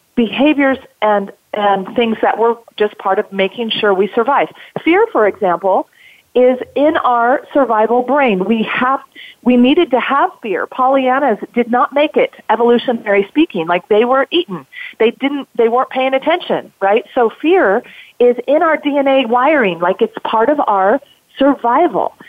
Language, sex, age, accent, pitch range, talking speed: English, female, 40-59, American, 205-275 Hz, 160 wpm